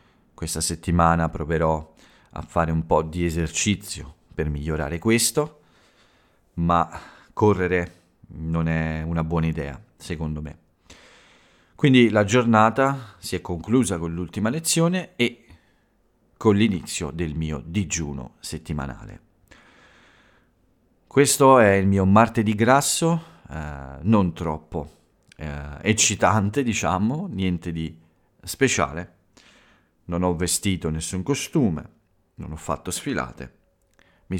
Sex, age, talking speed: male, 40-59, 110 wpm